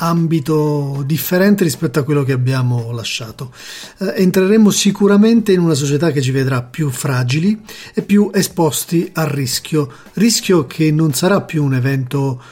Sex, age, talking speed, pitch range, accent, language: male, 40-59, 150 wpm, 150-190 Hz, native, Italian